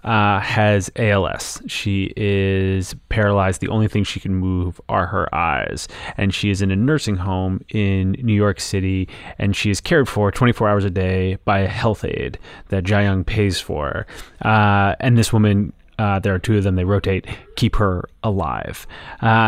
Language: English